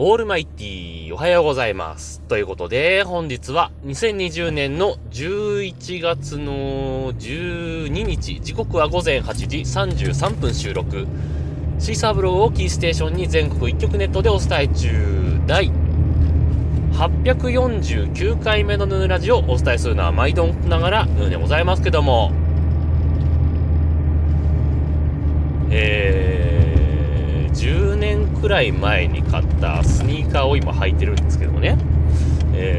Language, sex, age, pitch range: Japanese, male, 30-49, 75-80 Hz